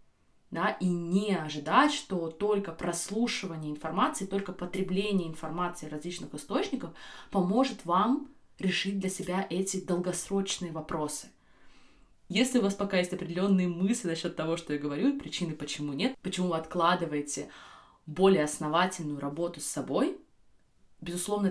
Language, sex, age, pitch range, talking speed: Russian, female, 20-39, 150-190 Hz, 130 wpm